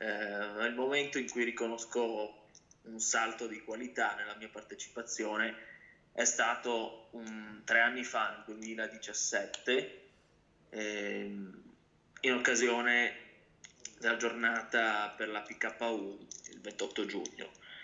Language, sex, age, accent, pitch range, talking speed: Italian, male, 20-39, native, 105-120 Hz, 105 wpm